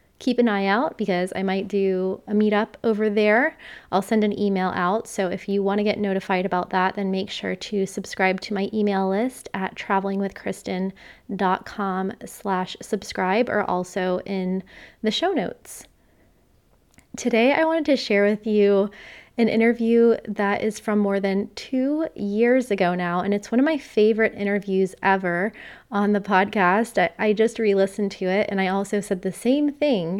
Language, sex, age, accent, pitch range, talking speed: English, female, 20-39, American, 190-220 Hz, 170 wpm